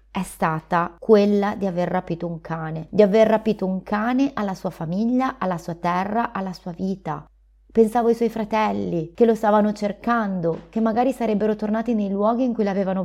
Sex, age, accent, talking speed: female, 30-49, native, 180 wpm